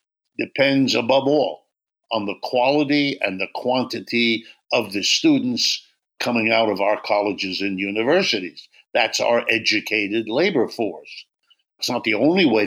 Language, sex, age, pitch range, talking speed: English, male, 60-79, 105-135 Hz, 135 wpm